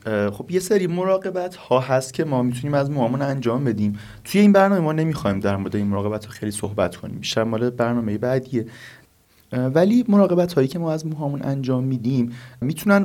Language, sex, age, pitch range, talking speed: Persian, male, 30-49, 110-155 Hz, 185 wpm